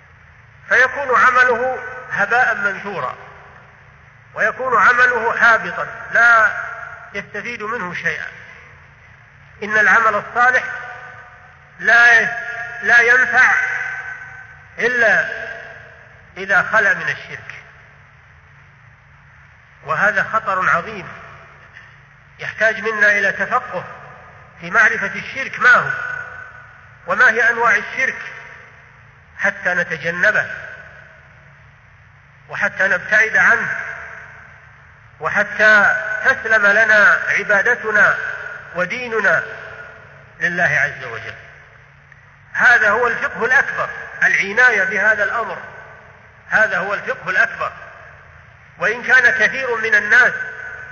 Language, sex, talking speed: French, male, 80 wpm